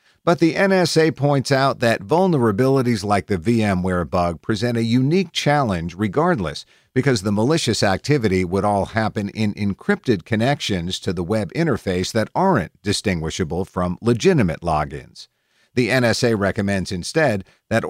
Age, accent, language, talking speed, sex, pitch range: 50-69, American, English, 135 wpm, male, 95-130 Hz